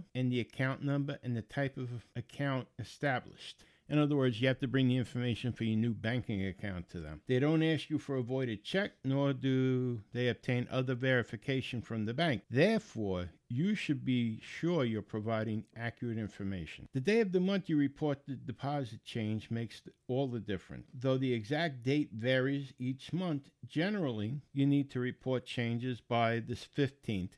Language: English